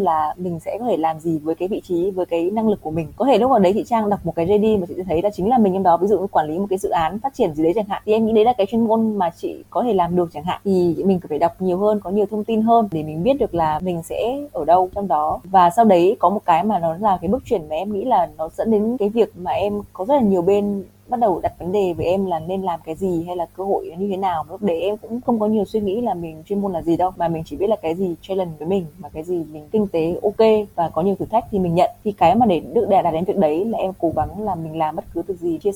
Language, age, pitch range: Vietnamese, 20-39, 165-215 Hz